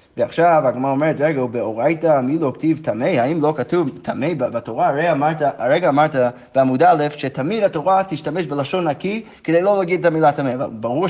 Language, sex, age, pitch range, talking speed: Hebrew, male, 30-49, 130-185 Hz, 175 wpm